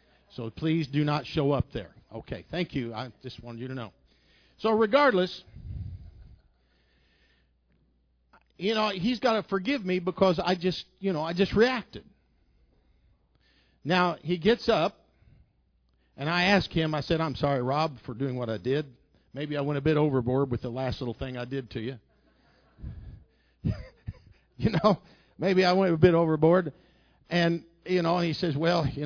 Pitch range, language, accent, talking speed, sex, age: 110-170 Hz, English, American, 170 wpm, male, 50-69